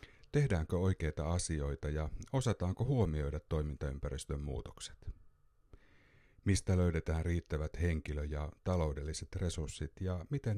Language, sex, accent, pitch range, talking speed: Finnish, male, native, 75-95 Hz, 95 wpm